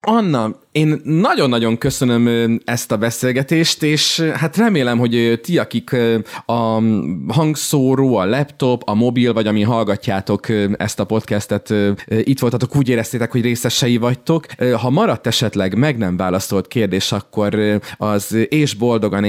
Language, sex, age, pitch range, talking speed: Hungarian, male, 30-49, 95-115 Hz, 135 wpm